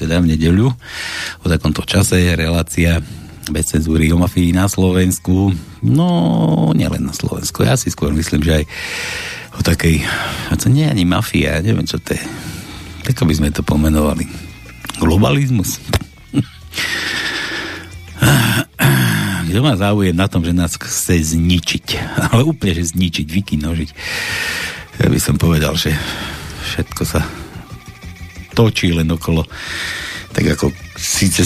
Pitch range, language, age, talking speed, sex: 80-90 Hz, Slovak, 60-79, 130 wpm, male